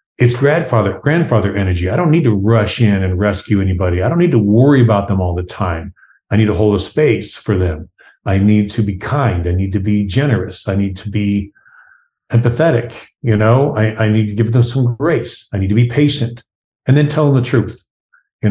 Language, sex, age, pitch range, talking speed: English, male, 50-69, 100-125 Hz, 220 wpm